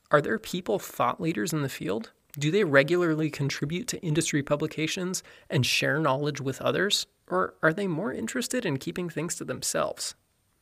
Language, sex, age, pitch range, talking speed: English, male, 20-39, 145-185 Hz, 170 wpm